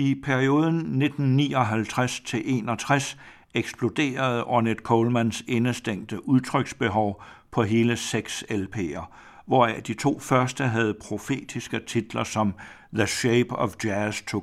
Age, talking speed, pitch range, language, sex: 60-79, 105 wpm, 110-125 Hz, Danish, male